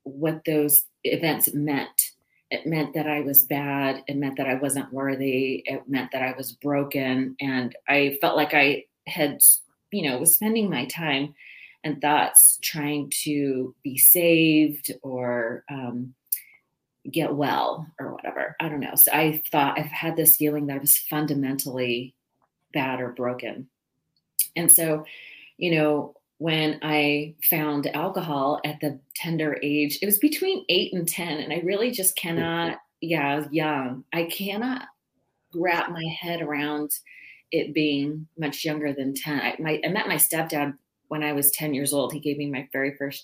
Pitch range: 135-155 Hz